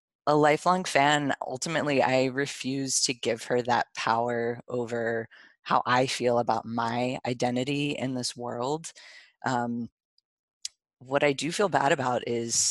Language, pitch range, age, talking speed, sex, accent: English, 115-130 Hz, 20-39, 135 wpm, female, American